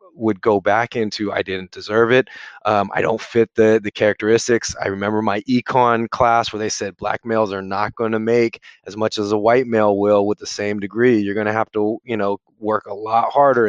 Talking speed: 230 wpm